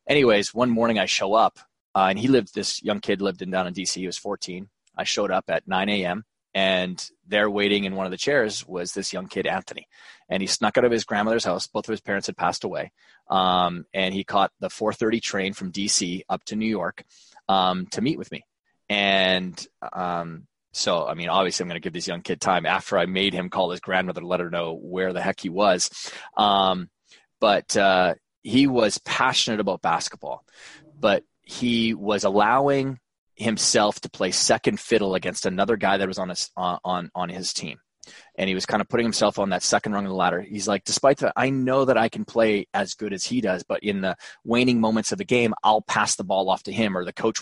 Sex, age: male, 20-39